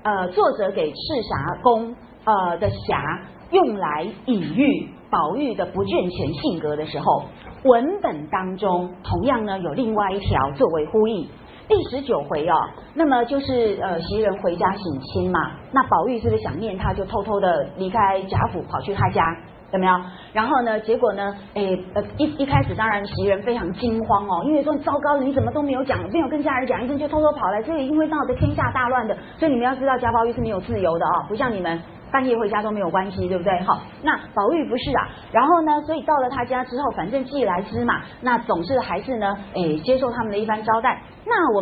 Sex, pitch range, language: female, 200-275 Hz, Chinese